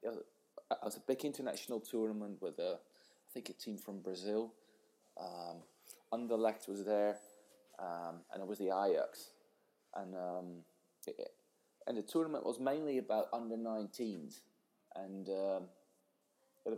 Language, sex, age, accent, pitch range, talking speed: English, male, 20-39, British, 100-130 Hz, 130 wpm